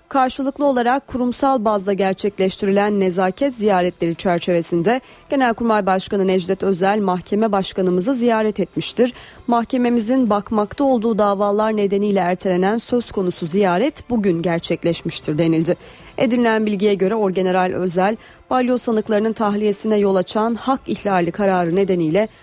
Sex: female